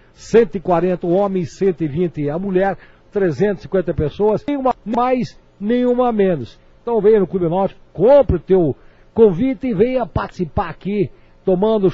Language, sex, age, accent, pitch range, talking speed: Portuguese, male, 60-79, Brazilian, 150-195 Hz, 130 wpm